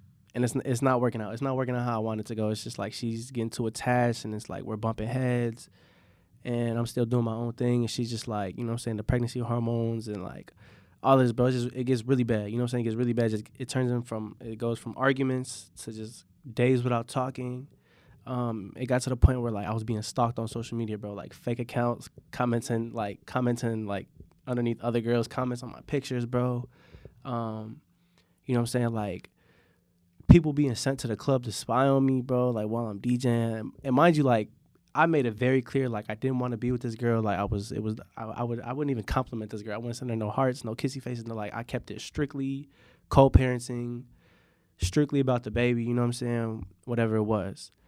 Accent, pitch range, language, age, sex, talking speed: American, 110-130 Hz, English, 20-39, male, 250 wpm